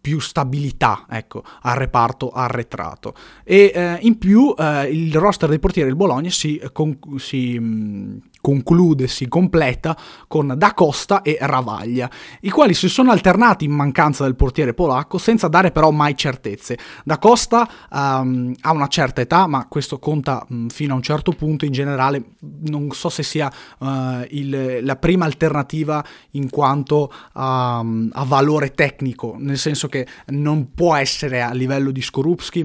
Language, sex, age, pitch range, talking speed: Italian, male, 20-39, 130-155 Hz, 145 wpm